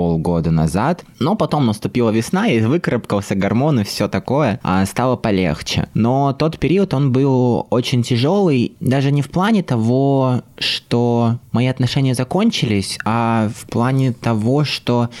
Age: 20-39